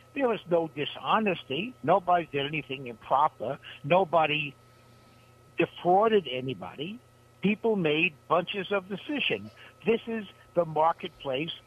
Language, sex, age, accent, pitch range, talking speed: English, male, 60-79, American, 125-180 Hz, 105 wpm